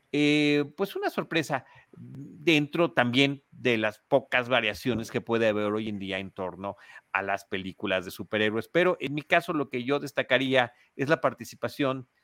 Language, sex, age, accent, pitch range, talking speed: Spanish, male, 40-59, Mexican, 115-145 Hz, 165 wpm